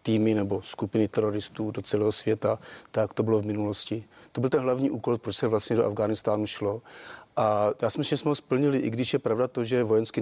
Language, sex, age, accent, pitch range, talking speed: Czech, male, 40-59, native, 110-130 Hz, 225 wpm